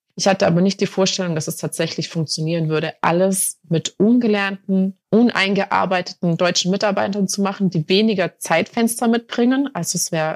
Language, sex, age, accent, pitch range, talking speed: German, female, 30-49, German, 165-200 Hz, 150 wpm